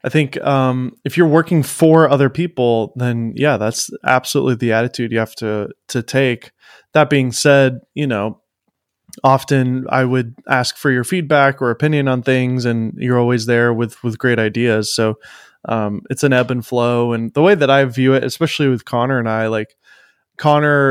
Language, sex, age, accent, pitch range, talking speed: English, male, 20-39, American, 120-140 Hz, 185 wpm